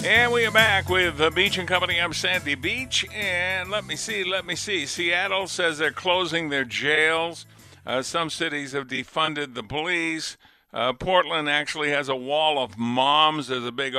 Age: 50-69